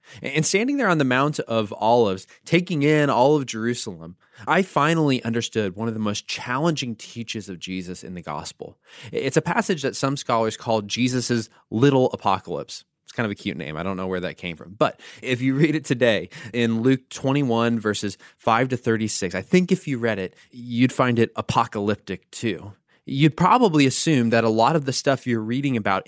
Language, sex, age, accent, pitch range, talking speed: English, male, 20-39, American, 110-150 Hz, 200 wpm